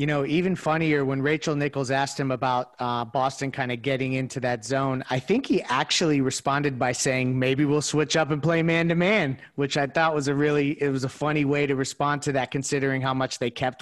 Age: 30-49